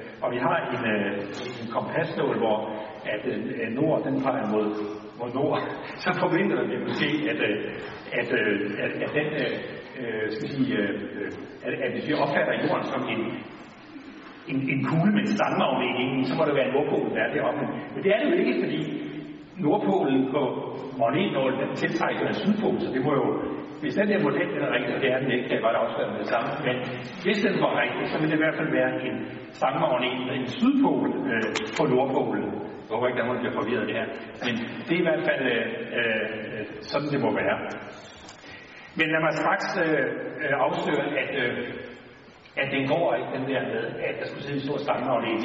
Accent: native